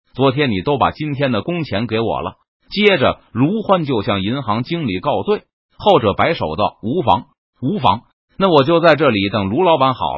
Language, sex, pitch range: Chinese, male, 110-170 Hz